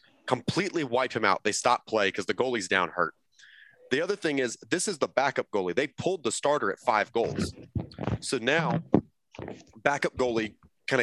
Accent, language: American, English